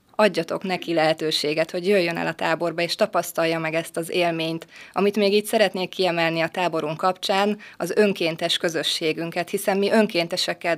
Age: 20-39